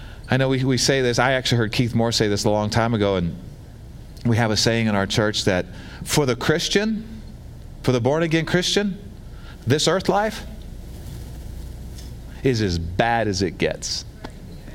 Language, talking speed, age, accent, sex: English, 170 wpm, 40-59, American, male